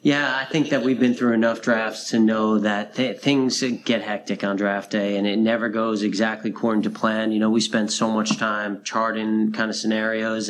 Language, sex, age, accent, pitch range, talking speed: English, male, 30-49, American, 105-115 Hz, 215 wpm